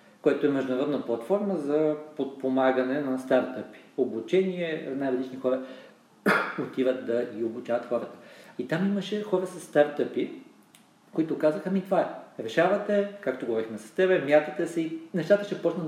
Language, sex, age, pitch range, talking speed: Bulgarian, male, 40-59, 125-160 Hz, 145 wpm